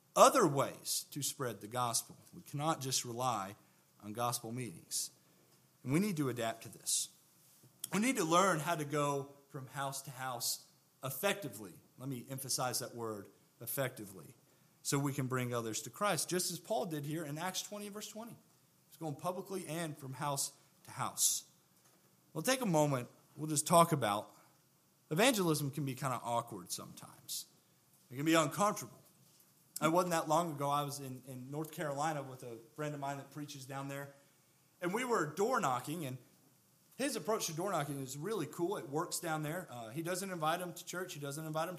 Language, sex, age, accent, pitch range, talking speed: English, male, 40-59, American, 140-180 Hz, 190 wpm